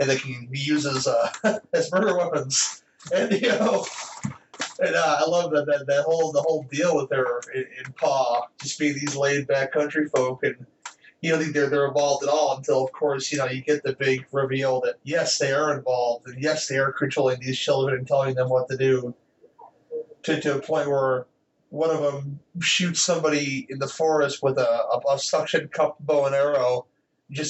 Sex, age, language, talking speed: male, 30-49, English, 205 wpm